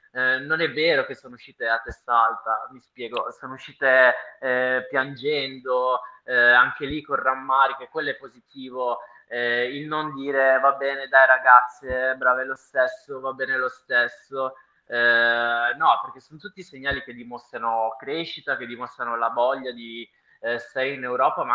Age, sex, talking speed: 20-39, male, 160 wpm